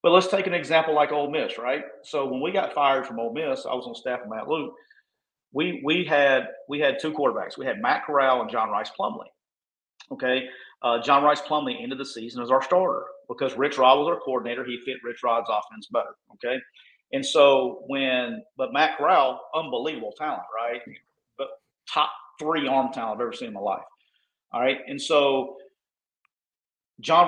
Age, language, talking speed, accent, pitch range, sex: 40-59, English, 195 wpm, American, 130-155 Hz, male